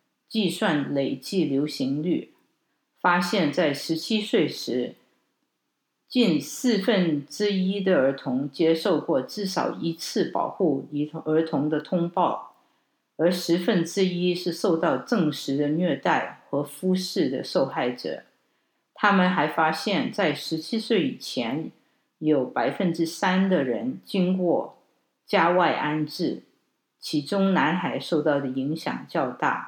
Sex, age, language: female, 50-69, English